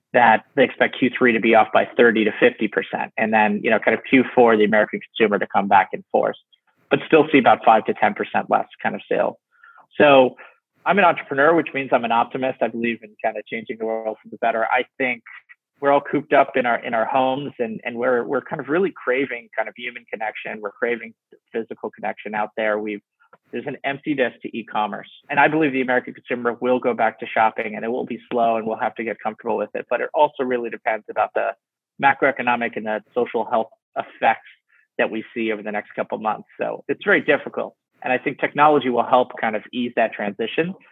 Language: English